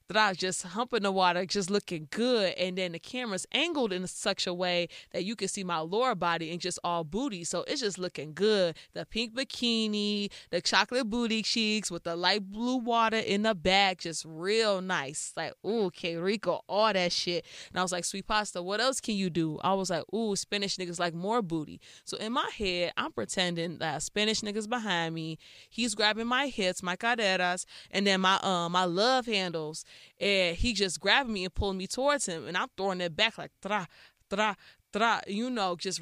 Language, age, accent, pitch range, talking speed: English, 20-39, American, 175-210 Hz, 210 wpm